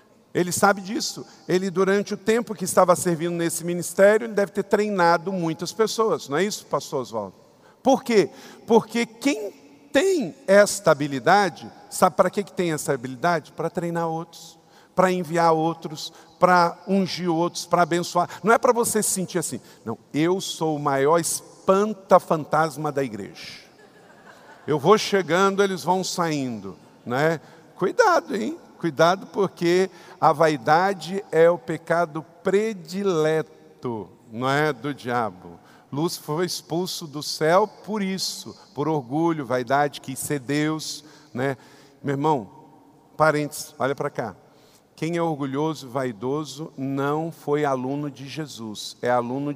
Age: 50-69